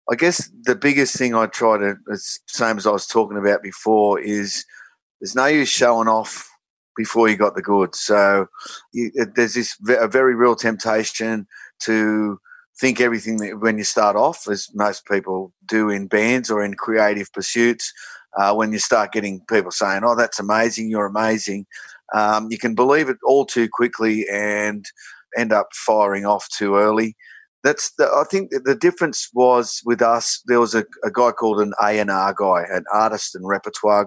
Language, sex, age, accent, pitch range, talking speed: English, male, 30-49, Australian, 105-125 Hz, 175 wpm